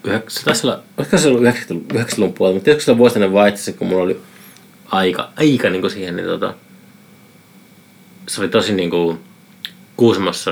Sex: male